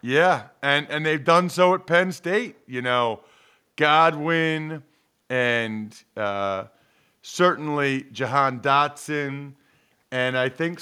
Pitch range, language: 150-205 Hz, English